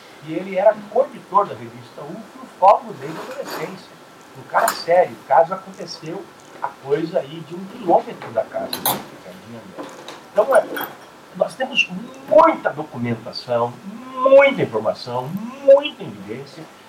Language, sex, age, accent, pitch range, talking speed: Portuguese, male, 50-69, Brazilian, 145-220 Hz, 135 wpm